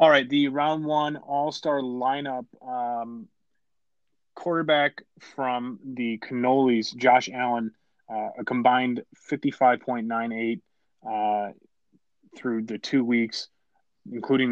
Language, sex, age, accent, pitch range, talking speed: English, male, 20-39, American, 110-130 Hz, 100 wpm